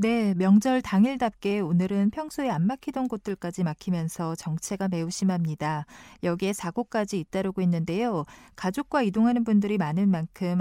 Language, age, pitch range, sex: Korean, 40-59, 175-240 Hz, female